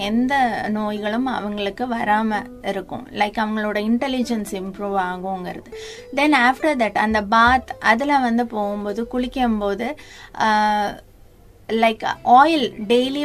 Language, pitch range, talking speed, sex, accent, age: Tamil, 210-265 Hz, 100 wpm, female, native, 20-39